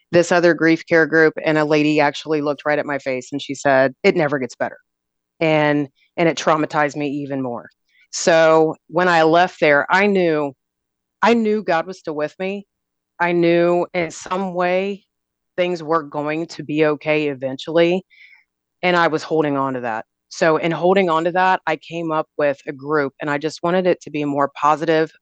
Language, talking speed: English, 200 wpm